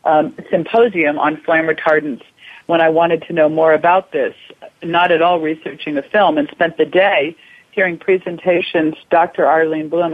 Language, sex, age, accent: English, female, 50-69, American